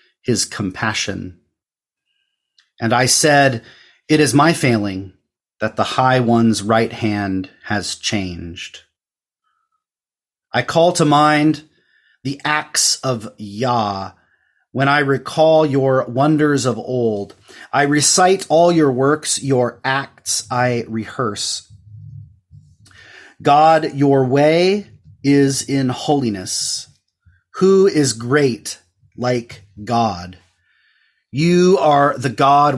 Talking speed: 105 wpm